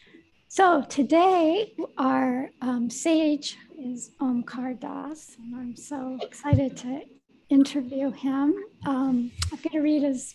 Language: English